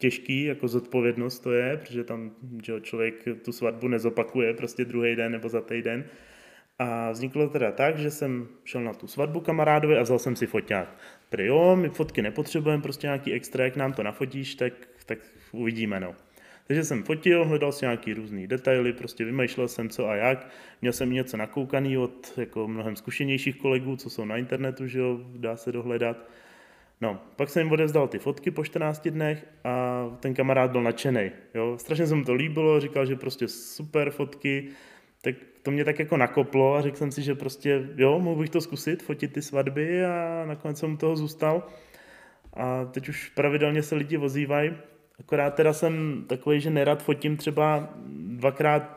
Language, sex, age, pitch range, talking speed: Czech, male, 20-39, 125-150 Hz, 185 wpm